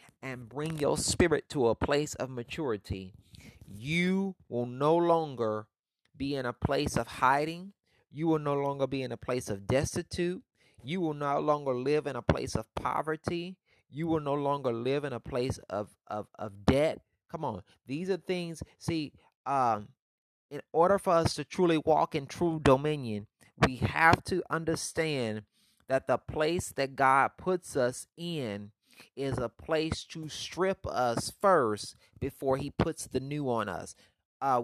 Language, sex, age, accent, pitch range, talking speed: English, male, 30-49, American, 115-155 Hz, 165 wpm